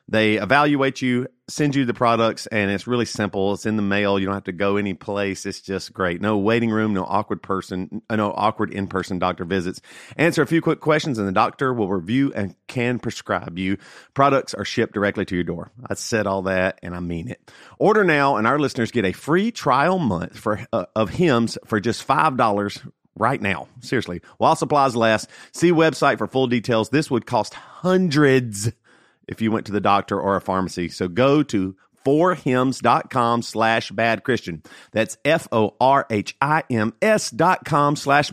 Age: 40-59